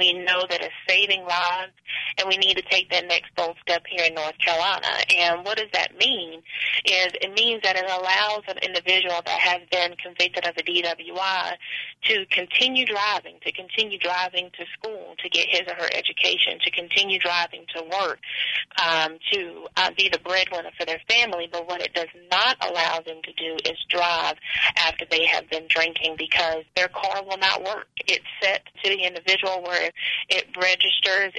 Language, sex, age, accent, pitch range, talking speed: English, female, 30-49, American, 170-190 Hz, 185 wpm